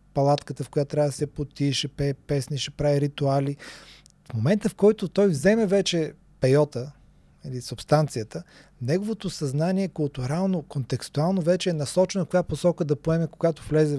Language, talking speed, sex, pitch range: Bulgarian, 155 wpm, male, 135-170 Hz